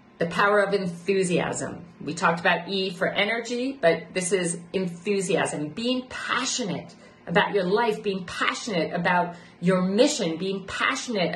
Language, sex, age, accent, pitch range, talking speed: English, female, 40-59, American, 175-225 Hz, 135 wpm